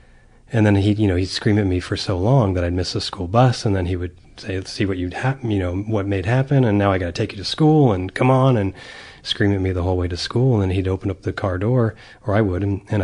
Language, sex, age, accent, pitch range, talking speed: English, male, 30-49, American, 95-110 Hz, 305 wpm